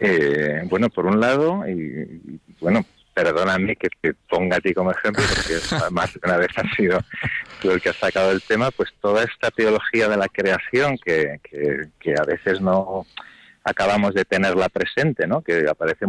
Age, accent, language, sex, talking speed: 40-59, Spanish, Spanish, male, 185 wpm